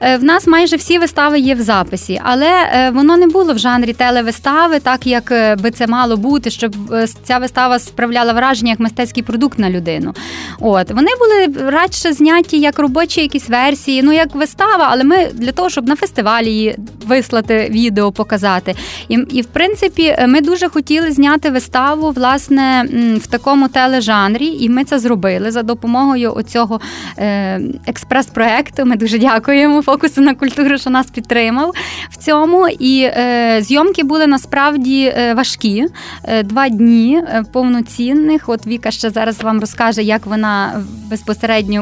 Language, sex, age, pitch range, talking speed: Ukrainian, female, 20-39, 230-290 Hz, 150 wpm